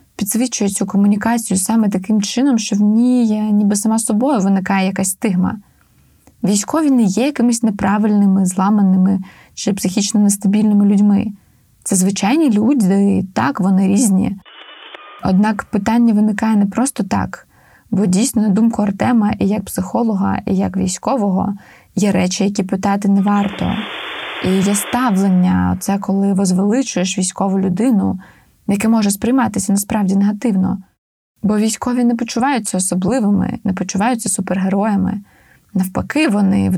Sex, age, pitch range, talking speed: female, 20-39, 195-230 Hz, 130 wpm